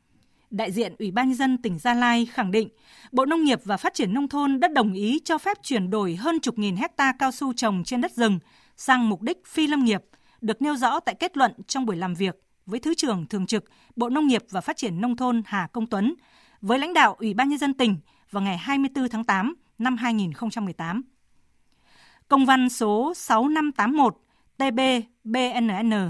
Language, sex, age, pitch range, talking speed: Vietnamese, female, 20-39, 220-275 Hz, 200 wpm